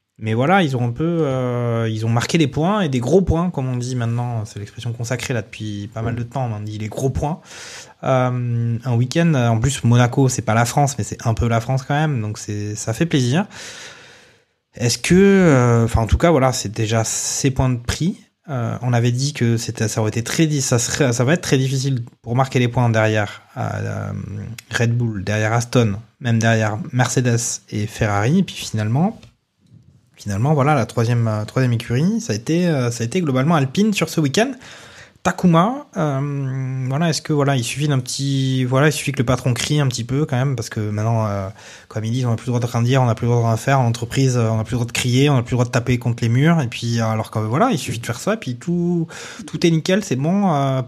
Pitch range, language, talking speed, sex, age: 115-140 Hz, French, 240 wpm, male, 20-39